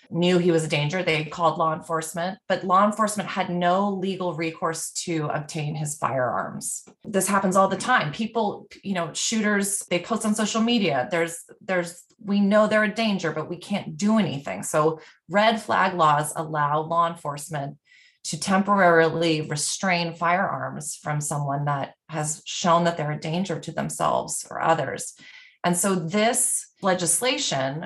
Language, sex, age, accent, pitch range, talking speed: English, female, 20-39, American, 160-195 Hz, 160 wpm